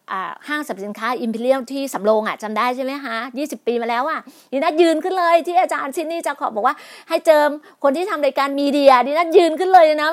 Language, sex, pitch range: Thai, female, 225-295 Hz